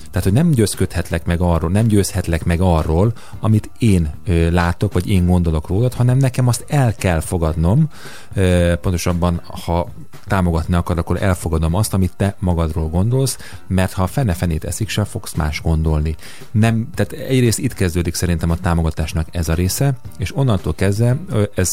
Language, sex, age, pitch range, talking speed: Hungarian, male, 30-49, 85-110 Hz, 155 wpm